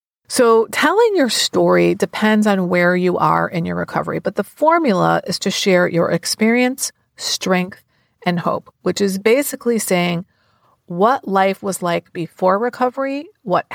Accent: American